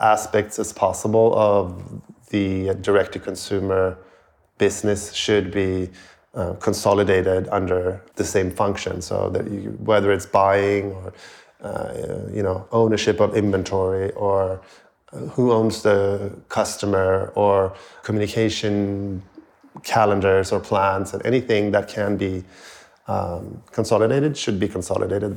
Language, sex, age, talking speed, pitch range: English, male, 30-49, 105 wpm, 95-110 Hz